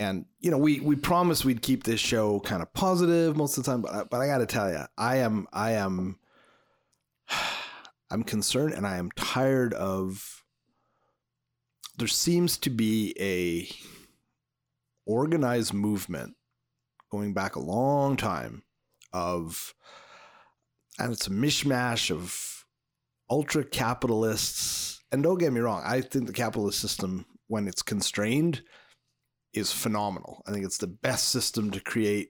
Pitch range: 100-135 Hz